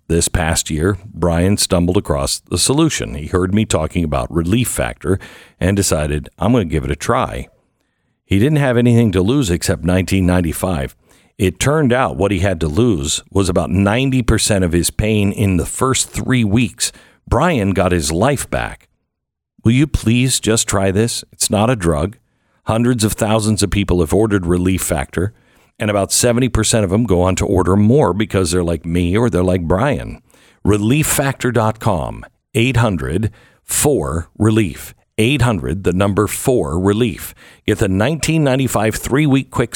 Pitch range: 85-115 Hz